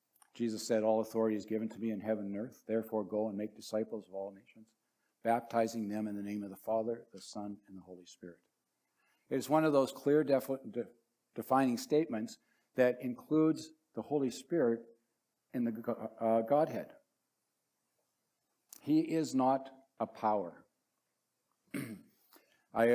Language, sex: English, male